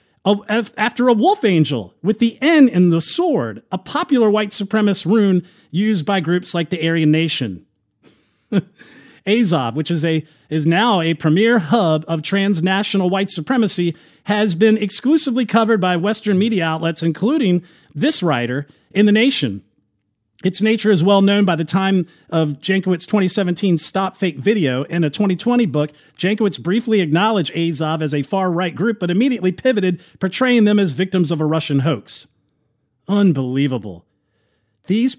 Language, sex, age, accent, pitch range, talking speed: English, male, 40-59, American, 165-220 Hz, 150 wpm